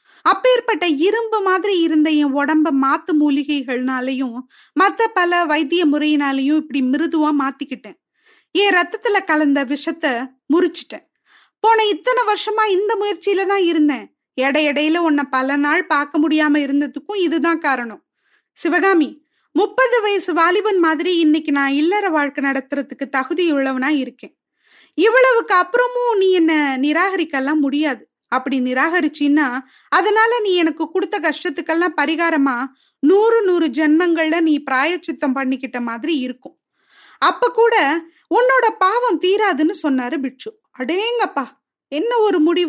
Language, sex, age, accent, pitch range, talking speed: Tamil, female, 20-39, native, 285-380 Hz, 80 wpm